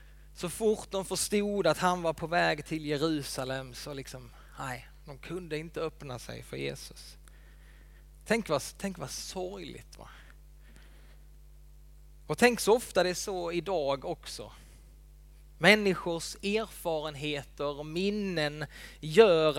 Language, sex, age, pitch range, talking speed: Swedish, male, 20-39, 130-180 Hz, 125 wpm